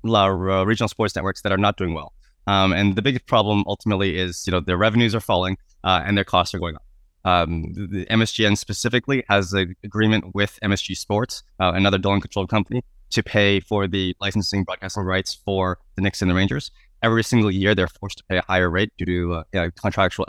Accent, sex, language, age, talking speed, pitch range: American, male, English, 20-39, 205 wpm, 90-105 Hz